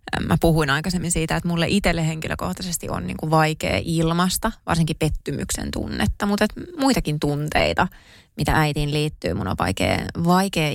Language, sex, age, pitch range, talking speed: Finnish, female, 20-39, 155-205 Hz, 150 wpm